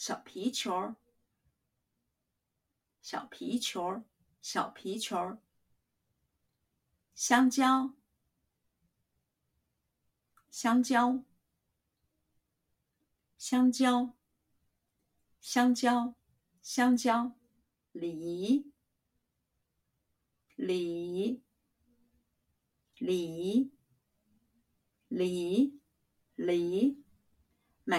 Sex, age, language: female, 50-69, Chinese